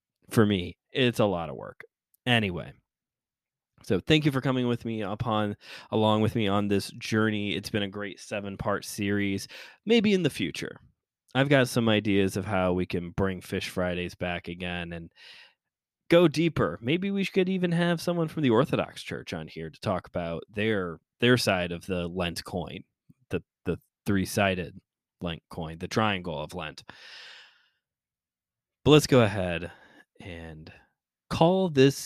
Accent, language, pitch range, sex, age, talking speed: American, English, 95-120 Hz, male, 20-39, 160 wpm